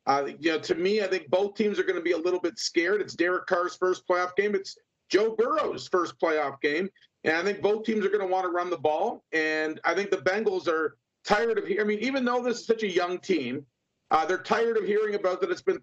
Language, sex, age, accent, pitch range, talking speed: English, male, 40-59, American, 180-225 Hz, 265 wpm